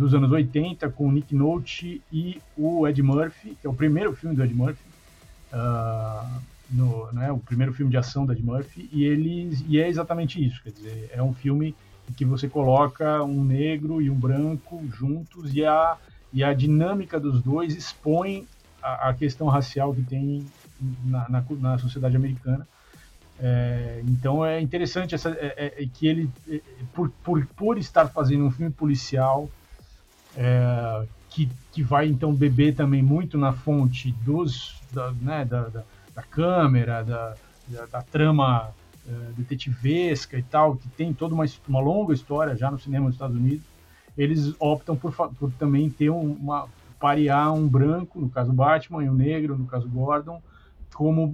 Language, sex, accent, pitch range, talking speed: Portuguese, male, Brazilian, 130-155 Hz, 170 wpm